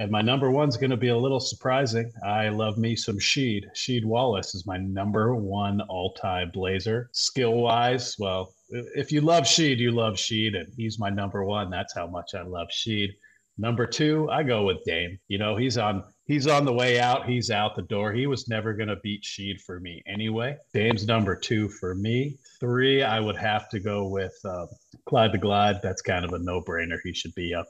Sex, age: male, 40-59